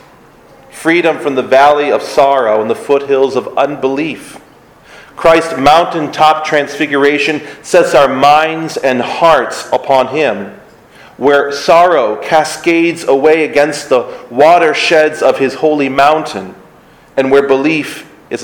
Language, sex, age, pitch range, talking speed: English, male, 40-59, 135-165 Hz, 115 wpm